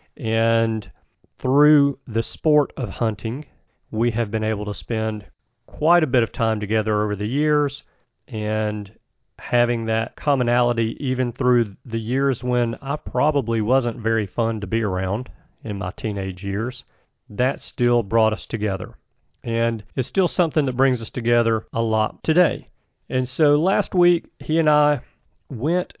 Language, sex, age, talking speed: English, male, 40-59, 150 wpm